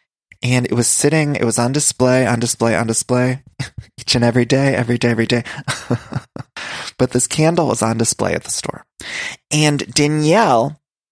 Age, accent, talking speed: 20-39, American, 165 wpm